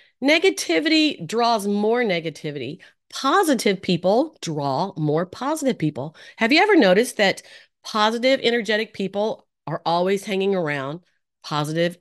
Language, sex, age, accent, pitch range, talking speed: English, female, 40-59, American, 175-255 Hz, 115 wpm